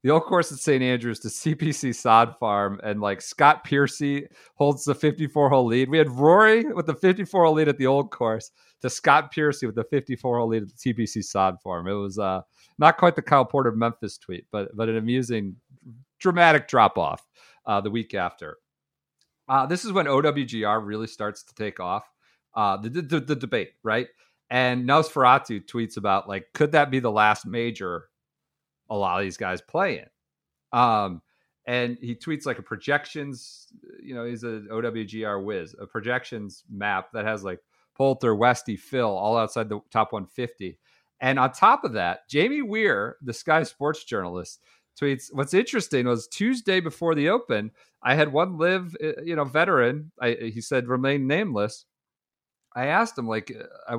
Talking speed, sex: 175 wpm, male